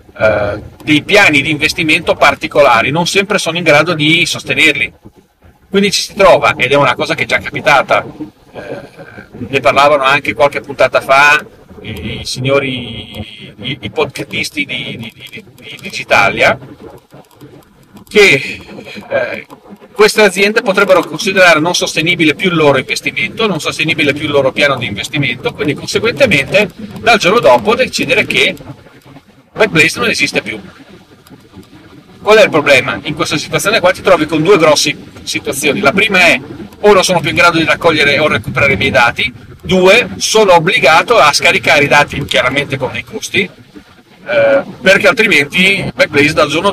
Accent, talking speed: native, 150 wpm